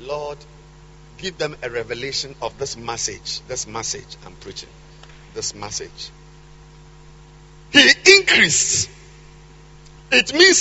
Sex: male